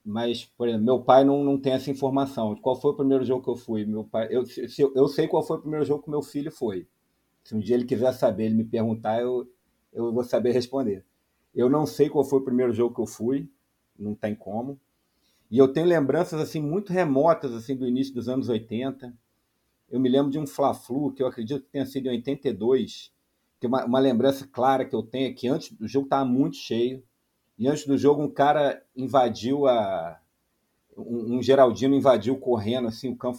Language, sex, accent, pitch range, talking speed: Portuguese, male, Brazilian, 115-135 Hz, 215 wpm